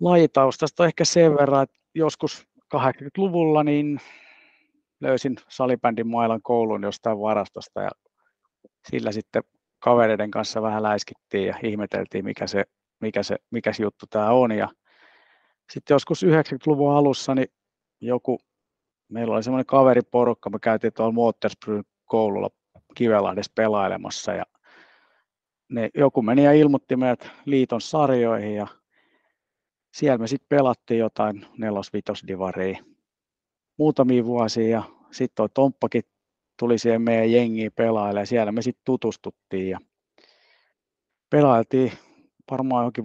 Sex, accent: male, native